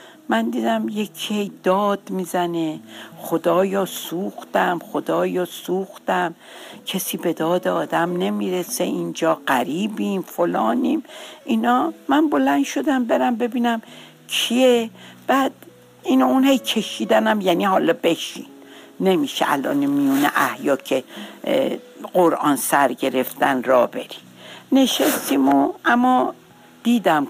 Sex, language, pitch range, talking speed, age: female, Persian, 165-260 Hz, 95 wpm, 60-79